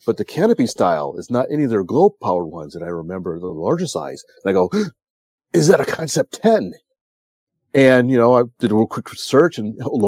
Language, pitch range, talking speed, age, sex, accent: English, 110-155 Hz, 220 wpm, 40-59, male, American